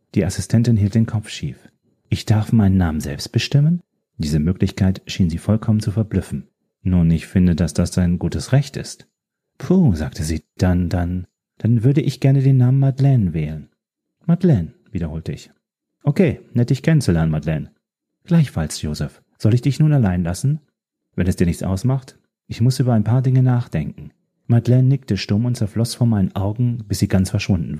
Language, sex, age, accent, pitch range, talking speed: German, male, 40-59, German, 90-120 Hz, 175 wpm